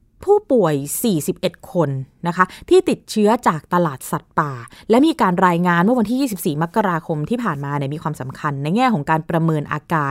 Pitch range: 155-230 Hz